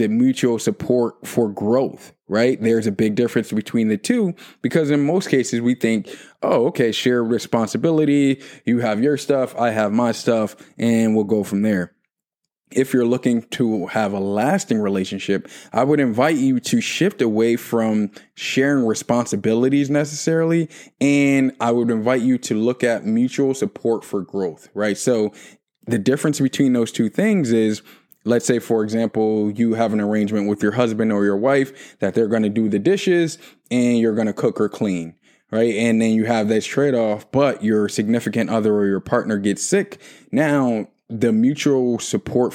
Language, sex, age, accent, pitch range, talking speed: English, male, 20-39, American, 105-130 Hz, 175 wpm